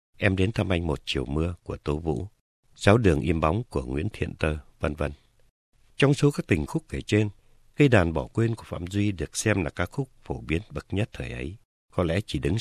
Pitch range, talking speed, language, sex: 80-115 Hz, 235 wpm, Vietnamese, male